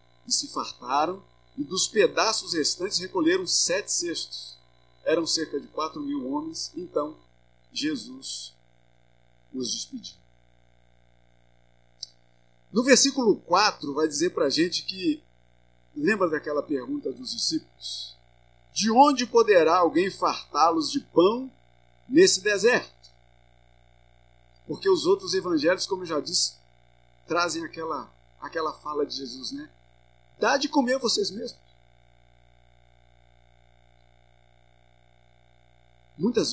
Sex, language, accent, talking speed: male, Portuguese, Brazilian, 105 wpm